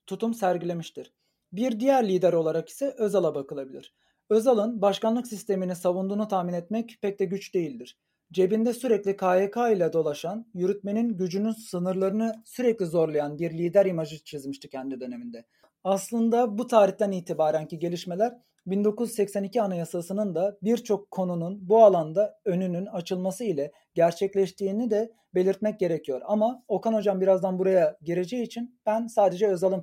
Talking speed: 130 wpm